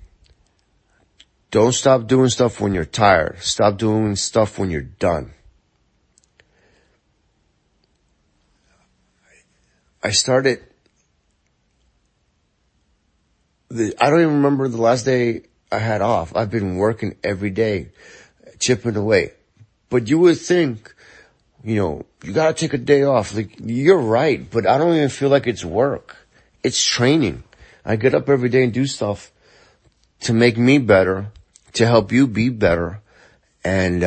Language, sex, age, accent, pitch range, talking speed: English, male, 30-49, American, 90-120 Hz, 135 wpm